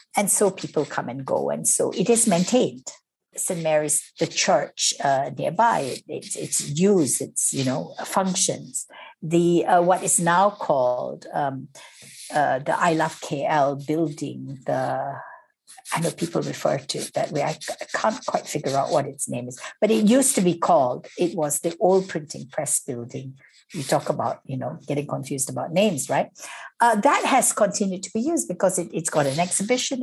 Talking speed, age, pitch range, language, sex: 180 wpm, 60-79, 150-220 Hz, English, female